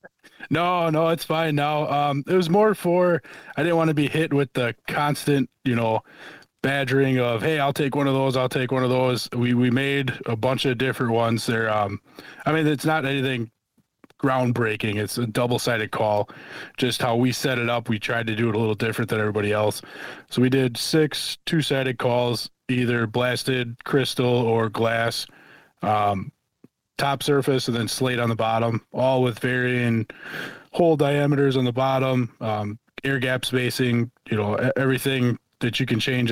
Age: 20-39